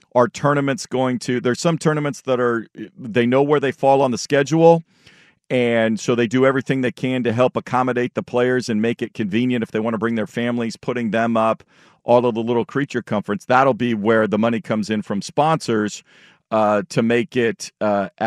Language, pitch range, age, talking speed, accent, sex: English, 110-130 Hz, 50-69, 205 wpm, American, male